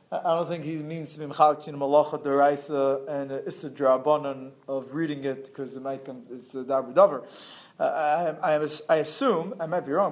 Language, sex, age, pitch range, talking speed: English, male, 30-49, 140-165 Hz, 185 wpm